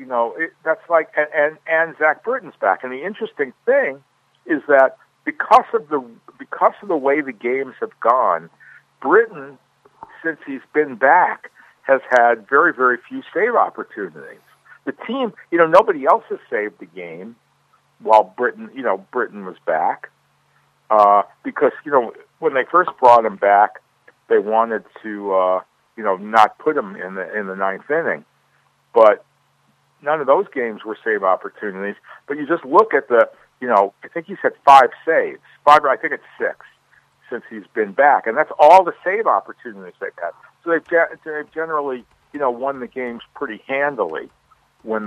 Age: 60-79